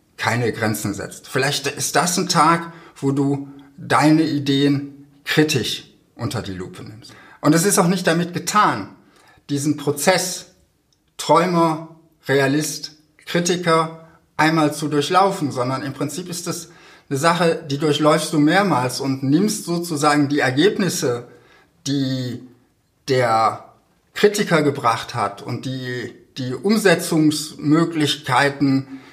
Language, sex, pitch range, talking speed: German, male, 130-160 Hz, 115 wpm